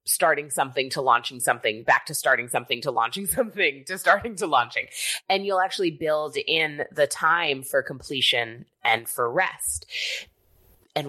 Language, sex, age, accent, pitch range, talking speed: English, female, 20-39, American, 135-205 Hz, 155 wpm